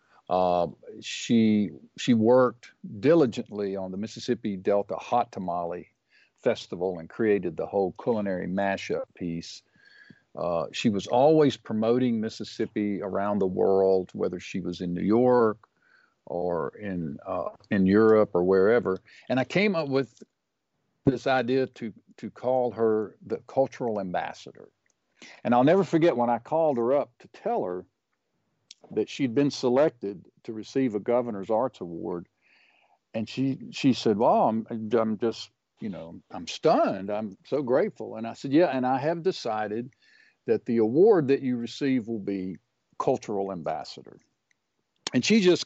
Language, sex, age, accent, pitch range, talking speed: English, male, 50-69, American, 95-130 Hz, 150 wpm